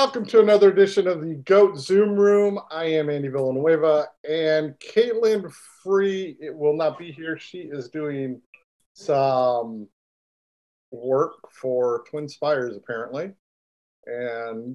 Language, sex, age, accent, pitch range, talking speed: English, male, 50-69, American, 130-160 Hz, 120 wpm